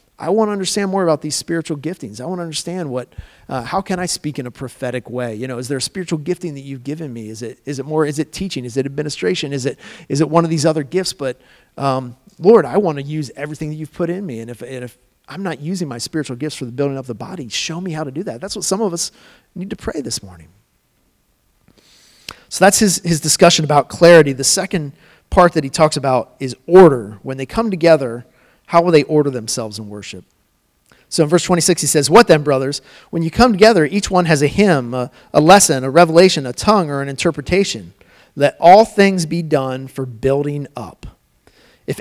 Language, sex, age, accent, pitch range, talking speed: English, male, 40-59, American, 135-180 Hz, 235 wpm